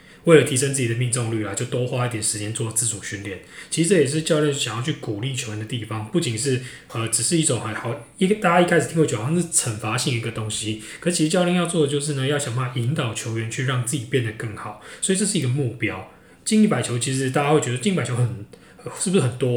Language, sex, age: Chinese, male, 20-39